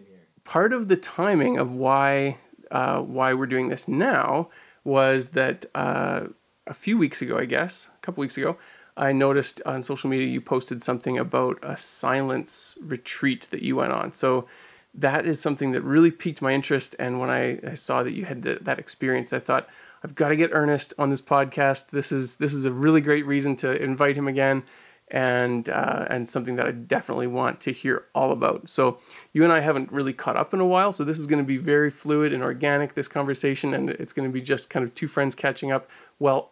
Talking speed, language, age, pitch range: 215 wpm, English, 30-49, 130-145 Hz